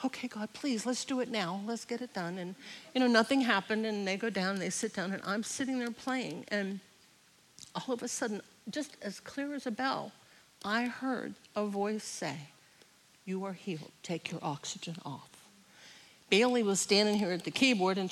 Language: English